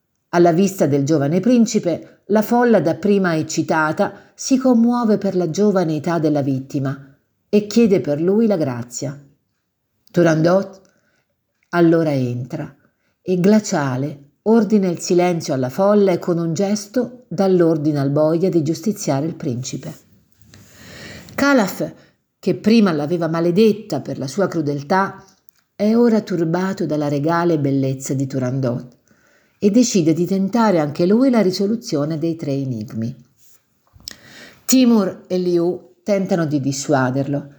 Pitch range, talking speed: 145-200 Hz, 125 wpm